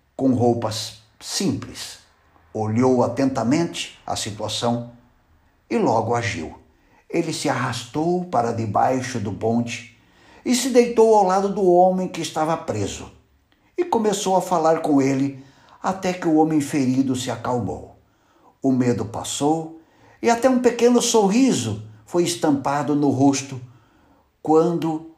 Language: Portuguese